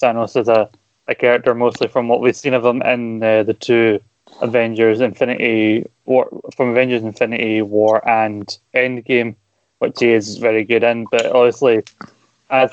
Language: English